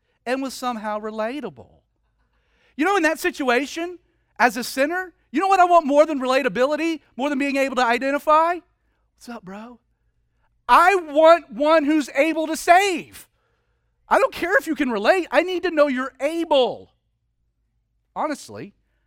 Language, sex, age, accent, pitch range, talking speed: English, male, 40-59, American, 185-290 Hz, 155 wpm